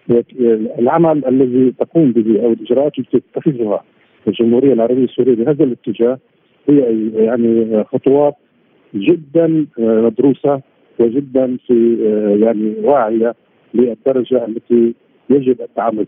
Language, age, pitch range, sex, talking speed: Arabic, 50-69, 115-155 Hz, male, 95 wpm